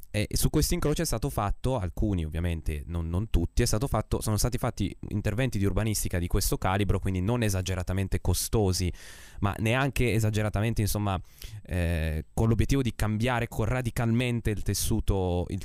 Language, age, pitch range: Italian, 20-39, 90-110 Hz